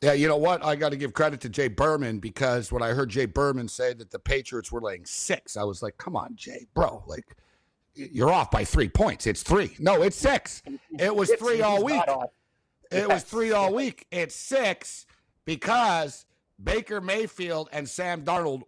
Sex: male